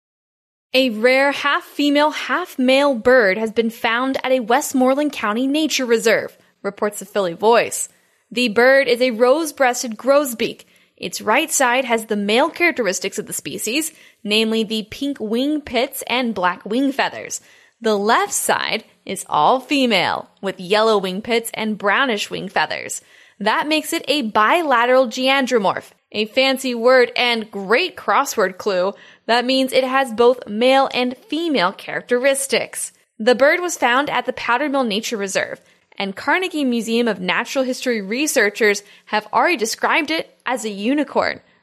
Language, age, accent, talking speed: English, 10-29, American, 150 wpm